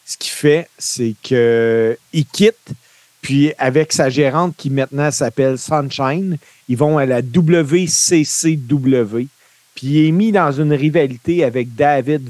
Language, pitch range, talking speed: French, 125-155 Hz, 135 wpm